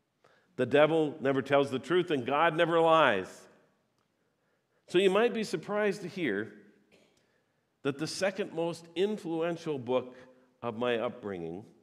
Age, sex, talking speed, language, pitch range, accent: 50-69, male, 130 wpm, English, 125-170 Hz, American